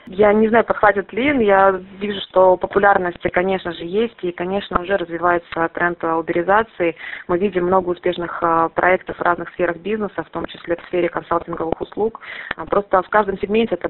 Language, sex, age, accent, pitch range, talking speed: Russian, female, 20-39, native, 170-195 Hz, 170 wpm